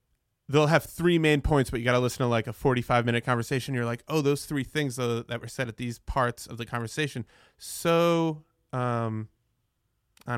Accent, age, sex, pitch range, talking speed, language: American, 20-39, male, 115-145 Hz, 200 wpm, English